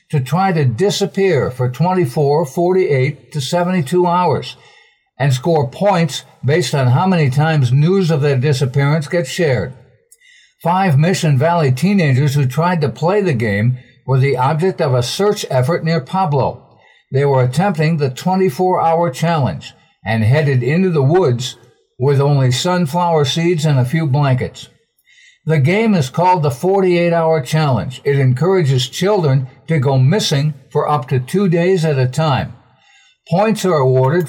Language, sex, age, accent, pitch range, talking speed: English, male, 60-79, American, 135-175 Hz, 150 wpm